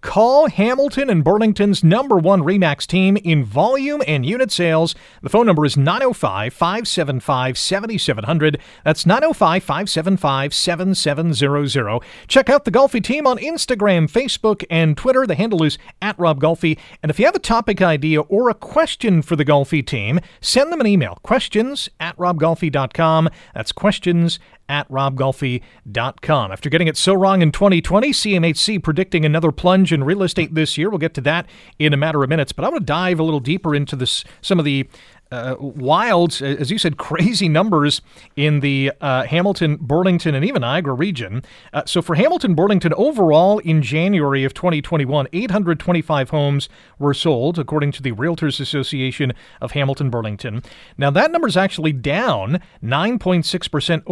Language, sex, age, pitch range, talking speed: English, male, 40-59, 145-190 Hz, 160 wpm